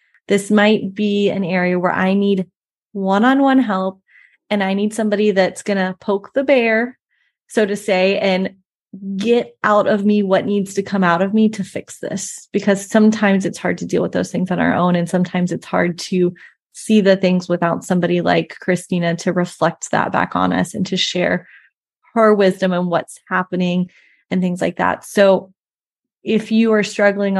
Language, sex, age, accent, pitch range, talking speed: English, female, 20-39, American, 185-215 Hz, 185 wpm